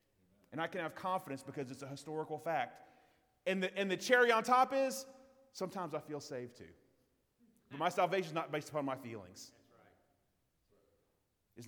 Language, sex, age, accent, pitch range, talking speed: English, male, 30-49, American, 135-180 Hz, 170 wpm